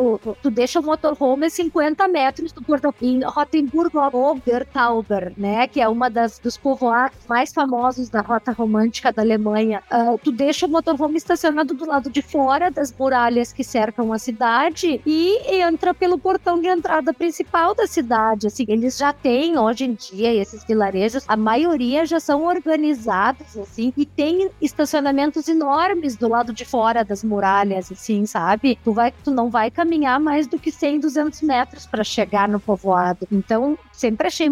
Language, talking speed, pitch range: Portuguese, 170 wpm, 225-305 Hz